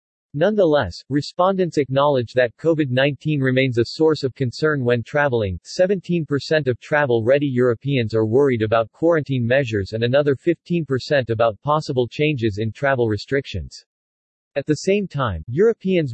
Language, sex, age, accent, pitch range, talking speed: English, male, 40-59, American, 115-150 Hz, 130 wpm